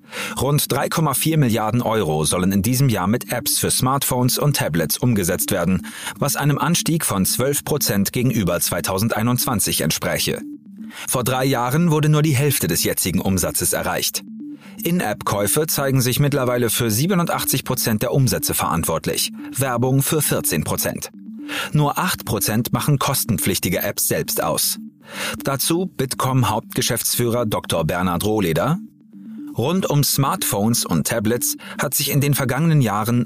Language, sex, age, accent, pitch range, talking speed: German, male, 40-59, German, 110-160 Hz, 135 wpm